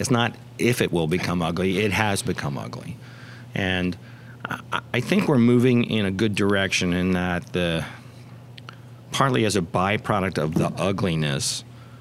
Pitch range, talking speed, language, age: 95-120 Hz, 150 wpm, English, 40-59